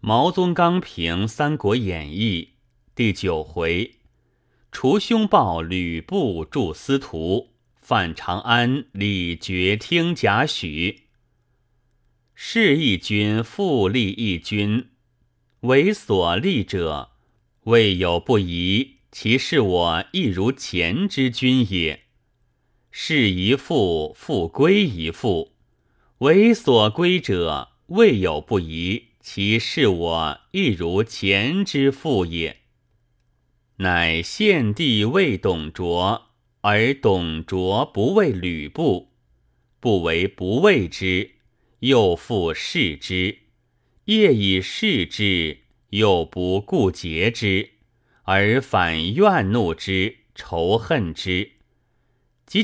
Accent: native